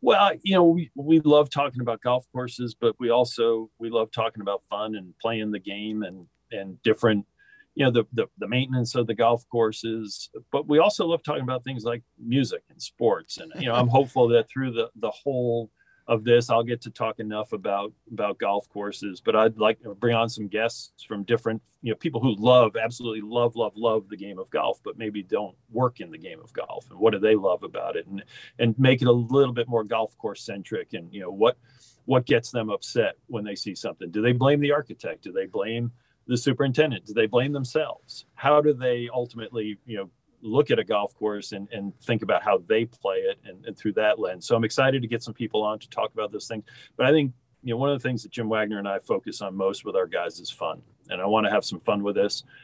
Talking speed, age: 240 wpm, 40-59